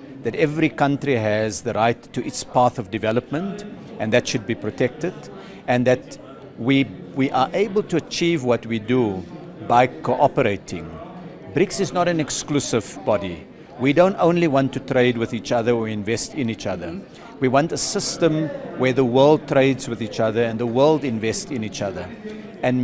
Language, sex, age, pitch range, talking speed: English, male, 50-69, 115-145 Hz, 180 wpm